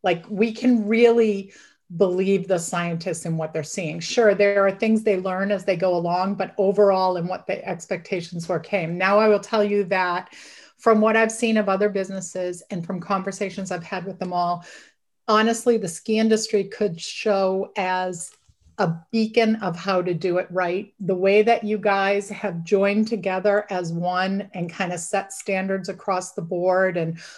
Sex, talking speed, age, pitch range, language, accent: female, 185 wpm, 40-59, 180-215 Hz, English, American